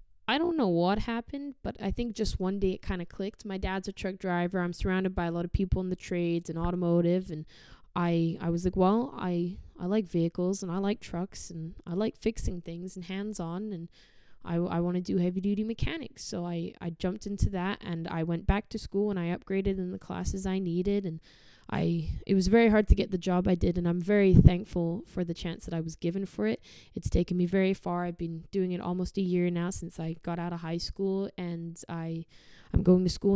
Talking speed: 235 wpm